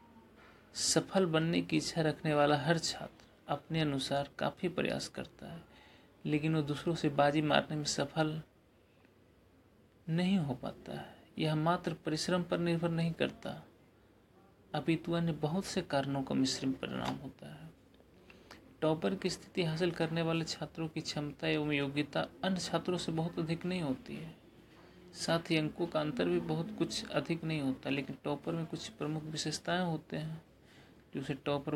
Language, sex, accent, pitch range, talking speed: Hindi, male, native, 145-170 Hz, 155 wpm